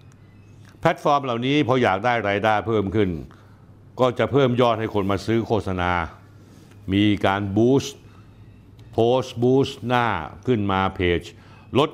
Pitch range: 95-115 Hz